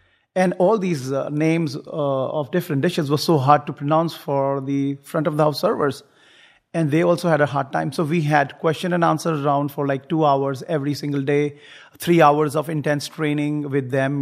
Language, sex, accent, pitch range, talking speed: English, male, Indian, 145-170 Hz, 190 wpm